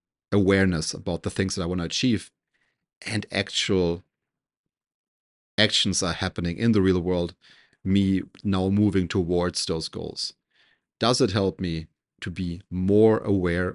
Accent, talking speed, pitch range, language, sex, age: German, 135 wpm, 90-110 Hz, English, male, 30-49